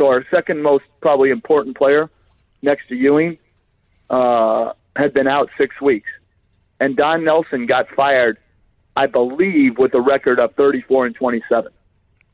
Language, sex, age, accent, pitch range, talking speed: English, male, 50-69, American, 115-140 Hz, 145 wpm